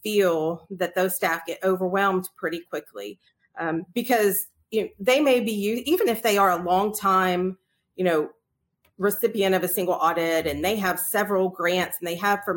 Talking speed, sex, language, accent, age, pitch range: 170 wpm, female, English, American, 40-59, 175-210 Hz